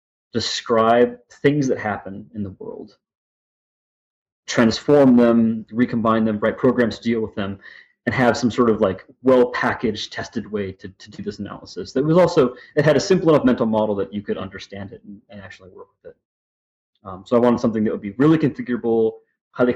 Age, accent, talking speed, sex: 30-49, American, 195 wpm, male